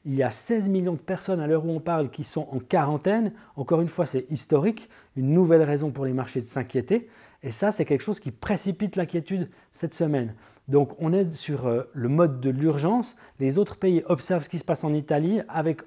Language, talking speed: French, 220 wpm